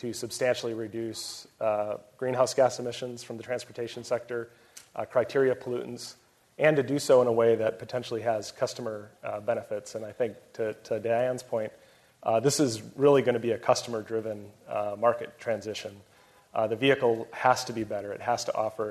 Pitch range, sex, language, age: 110-125 Hz, male, English, 30-49